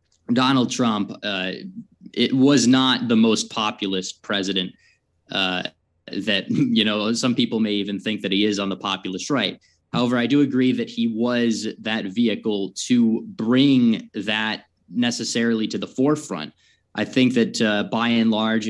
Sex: male